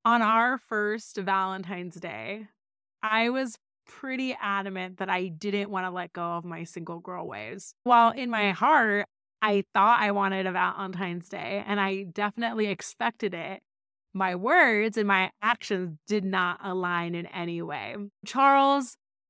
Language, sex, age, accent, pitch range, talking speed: English, female, 20-39, American, 185-230 Hz, 150 wpm